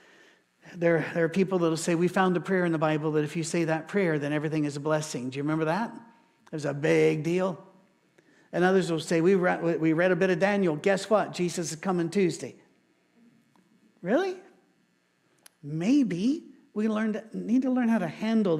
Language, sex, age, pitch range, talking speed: English, male, 50-69, 160-205 Hz, 200 wpm